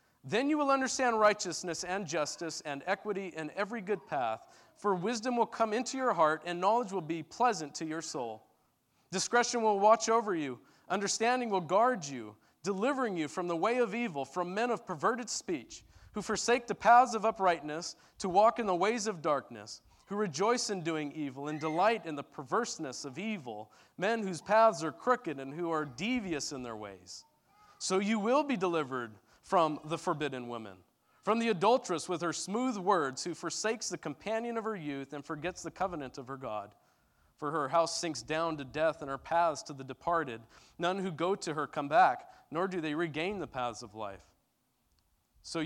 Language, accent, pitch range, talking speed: English, American, 140-205 Hz, 190 wpm